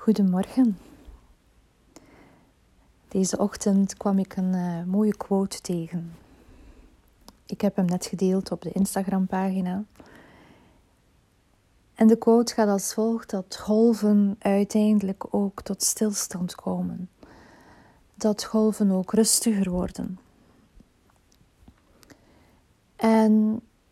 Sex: female